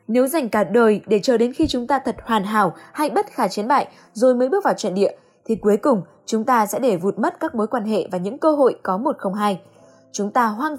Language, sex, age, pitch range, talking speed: Vietnamese, female, 10-29, 200-270 Hz, 265 wpm